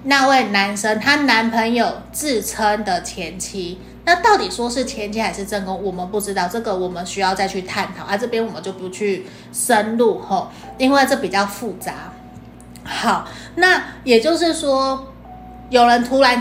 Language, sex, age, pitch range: Chinese, female, 30-49, 200-250 Hz